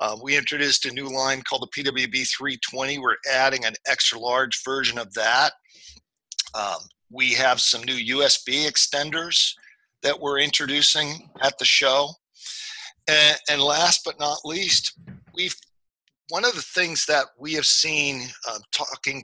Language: English